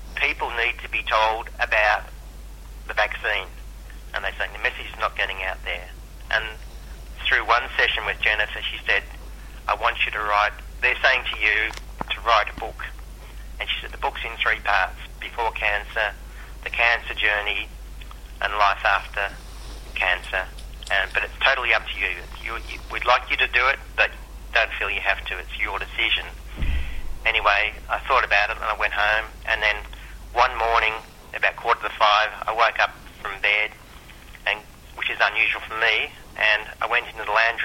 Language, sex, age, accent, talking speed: English, male, 40-59, Australian, 180 wpm